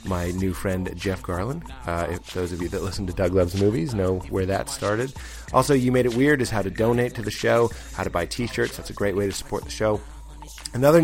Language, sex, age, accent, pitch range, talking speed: English, male, 30-49, American, 90-110 Hz, 245 wpm